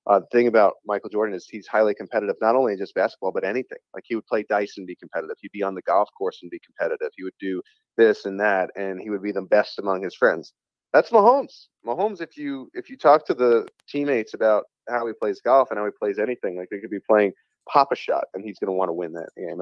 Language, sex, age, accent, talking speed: English, male, 30-49, American, 265 wpm